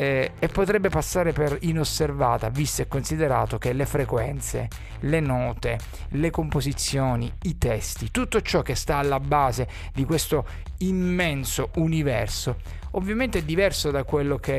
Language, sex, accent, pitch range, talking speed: Italian, male, native, 130-170 Hz, 140 wpm